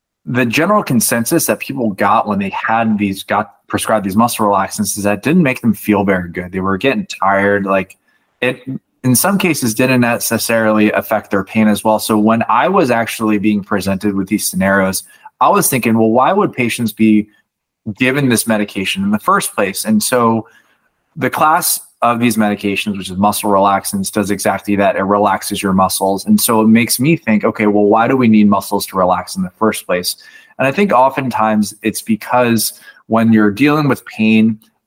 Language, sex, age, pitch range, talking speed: English, male, 20-39, 100-120 Hz, 190 wpm